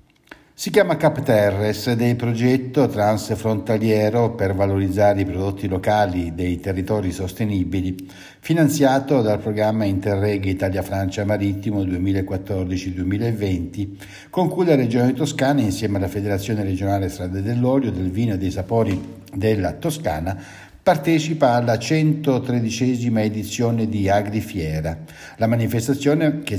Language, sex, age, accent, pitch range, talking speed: Italian, male, 60-79, native, 95-120 Hz, 115 wpm